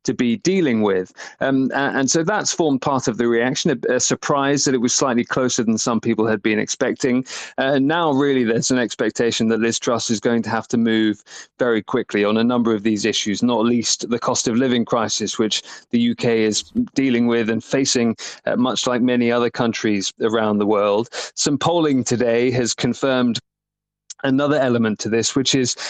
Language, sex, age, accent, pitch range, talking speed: English, male, 30-49, British, 115-130 Hz, 195 wpm